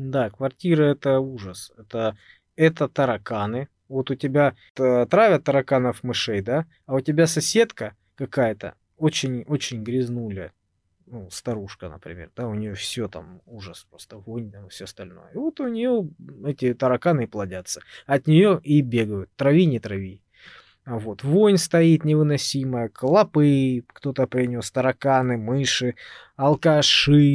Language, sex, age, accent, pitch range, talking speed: Russian, male, 20-39, native, 110-145 Hz, 125 wpm